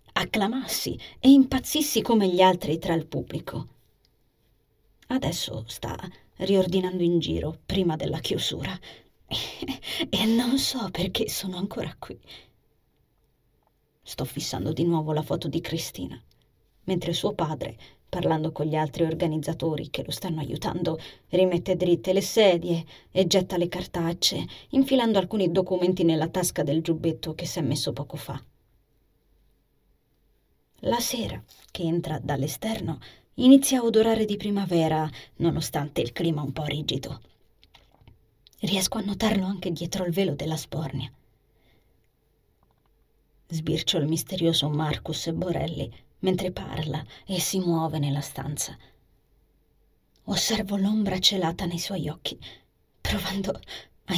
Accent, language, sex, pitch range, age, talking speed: native, Italian, female, 155-190 Hz, 20-39, 120 wpm